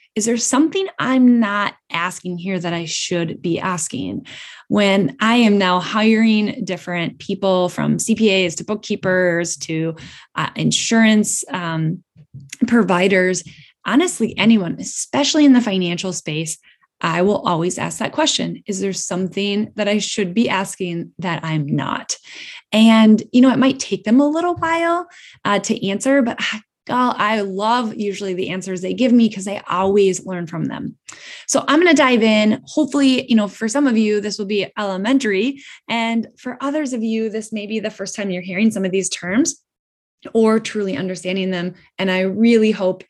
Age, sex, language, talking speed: 10-29, female, English, 170 wpm